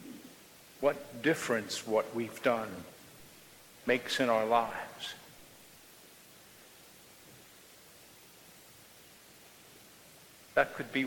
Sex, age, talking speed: male, 60-79, 65 wpm